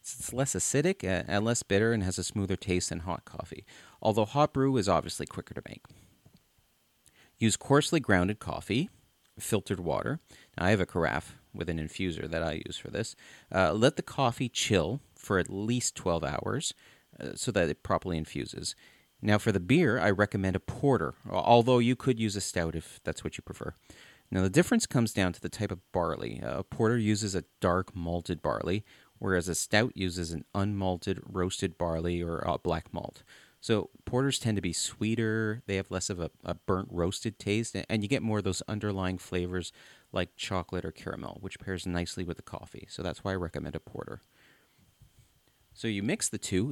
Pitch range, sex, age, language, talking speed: 90-110 Hz, male, 40-59, English, 195 wpm